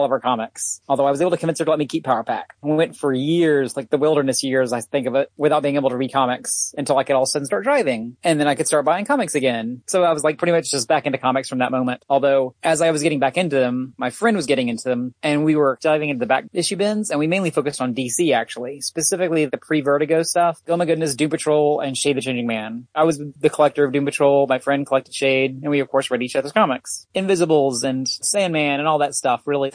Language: English